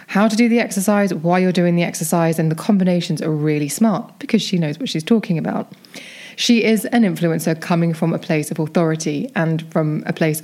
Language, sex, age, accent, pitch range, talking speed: English, female, 20-39, British, 170-210 Hz, 215 wpm